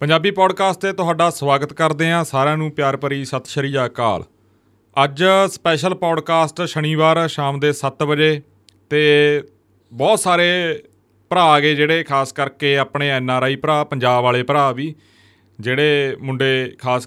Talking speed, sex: 150 wpm, male